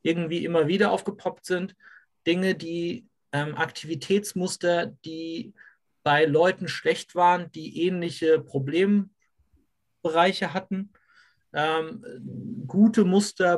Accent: German